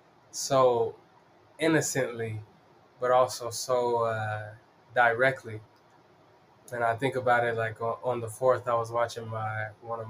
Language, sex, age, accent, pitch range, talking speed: English, male, 20-39, American, 115-130 Hz, 130 wpm